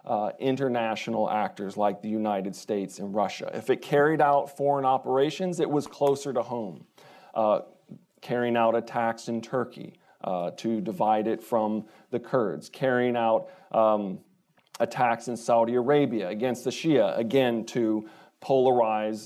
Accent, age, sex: American, 40-59, male